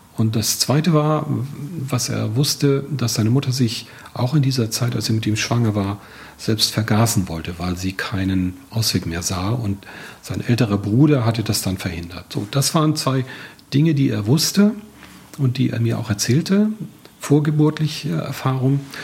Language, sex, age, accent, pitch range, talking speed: German, male, 40-59, German, 110-145 Hz, 170 wpm